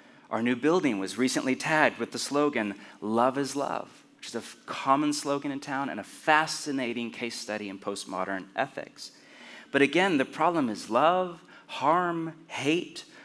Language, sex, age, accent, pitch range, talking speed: English, male, 30-49, American, 110-160 Hz, 160 wpm